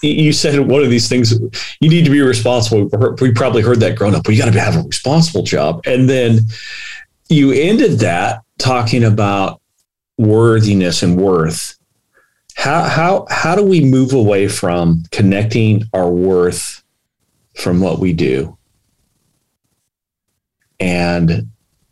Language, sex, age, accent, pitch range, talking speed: English, male, 40-59, American, 95-125 Hz, 135 wpm